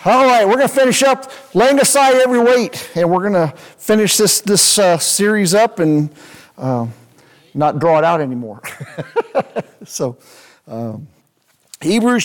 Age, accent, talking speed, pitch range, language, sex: 50-69, American, 150 wpm, 150-195 Hz, English, male